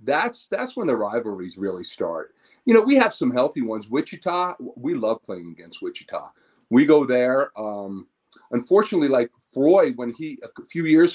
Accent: American